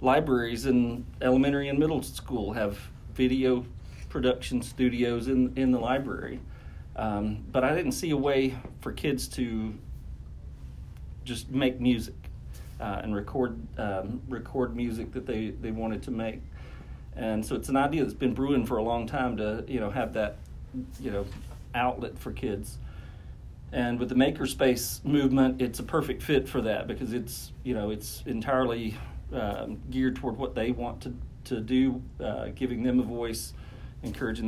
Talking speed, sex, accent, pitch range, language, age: 170 wpm, male, American, 105-130 Hz, English, 40-59